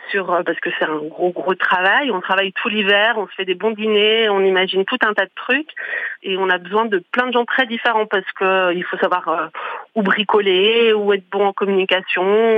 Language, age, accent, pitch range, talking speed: French, 30-49, French, 185-220 Hz, 235 wpm